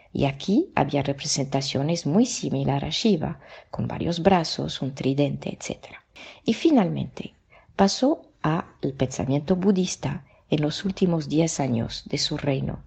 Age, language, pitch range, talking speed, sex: 50-69, Spanish, 140-180 Hz, 130 wpm, female